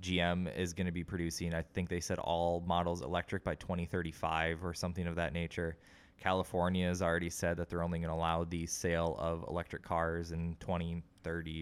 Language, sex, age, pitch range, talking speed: English, male, 20-39, 85-95 Hz, 190 wpm